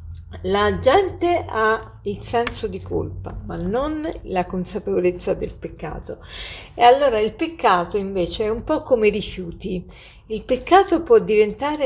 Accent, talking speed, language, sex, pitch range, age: native, 140 wpm, Italian, female, 195-245 Hz, 40-59